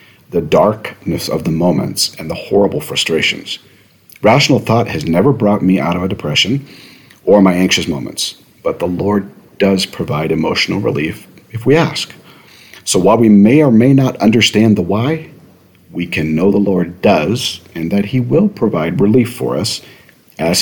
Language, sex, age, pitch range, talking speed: English, male, 40-59, 90-110 Hz, 170 wpm